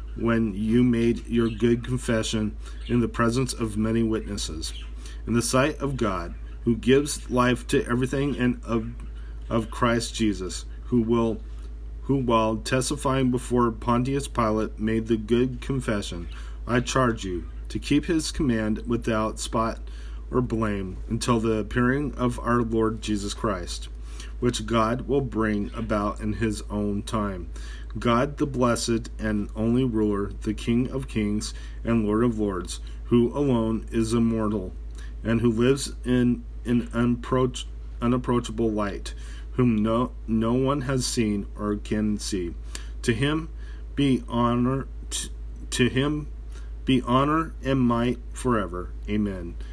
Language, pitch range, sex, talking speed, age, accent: English, 95-125 Hz, male, 140 wpm, 40-59, American